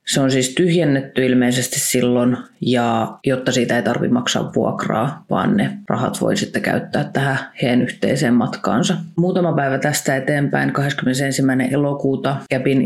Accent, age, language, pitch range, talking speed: native, 30-49, Finnish, 125-150 Hz, 140 wpm